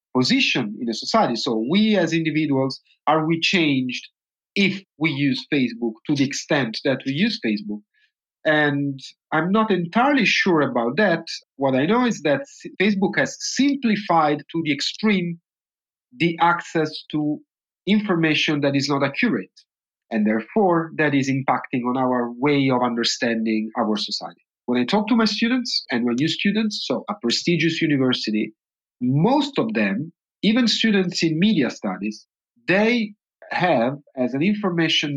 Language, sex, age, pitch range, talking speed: English, male, 40-59, 125-180 Hz, 150 wpm